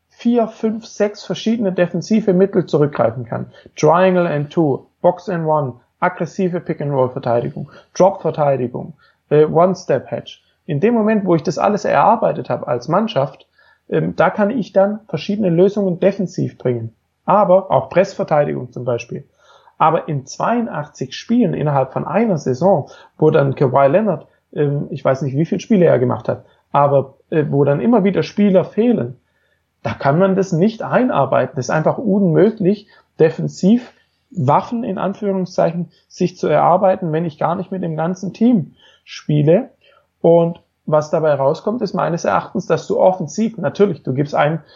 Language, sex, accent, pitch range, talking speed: German, male, German, 150-195 Hz, 150 wpm